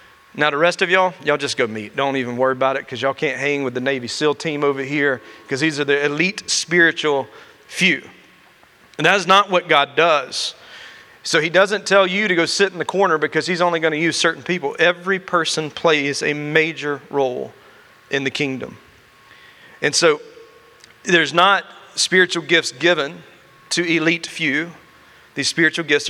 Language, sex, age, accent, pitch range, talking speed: English, male, 40-59, American, 150-190 Hz, 180 wpm